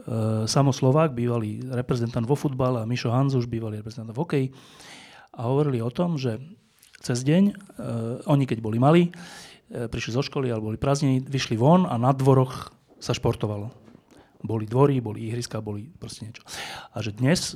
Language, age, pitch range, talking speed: Slovak, 30-49, 115-140 Hz, 165 wpm